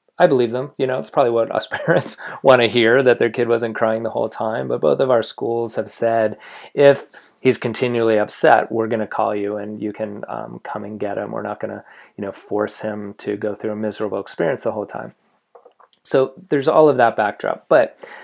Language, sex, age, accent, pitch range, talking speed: English, male, 30-49, American, 105-120 Hz, 225 wpm